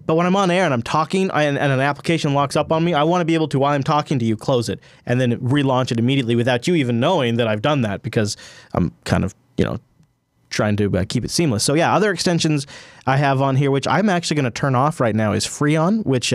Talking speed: 265 wpm